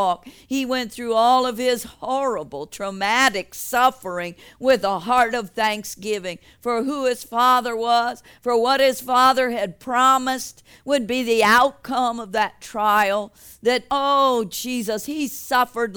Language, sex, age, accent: English, female, 50-69, American